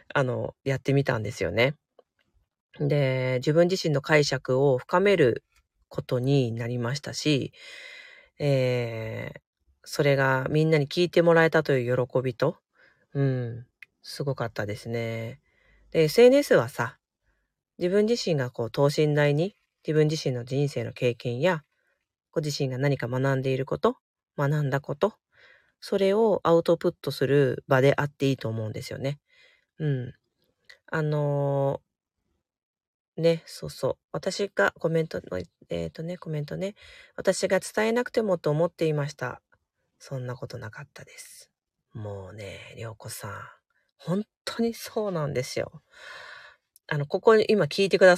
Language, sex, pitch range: Japanese, female, 130-180 Hz